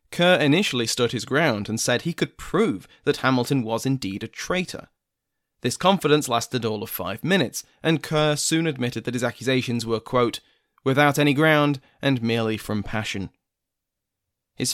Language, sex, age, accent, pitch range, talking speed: English, male, 20-39, British, 115-155 Hz, 165 wpm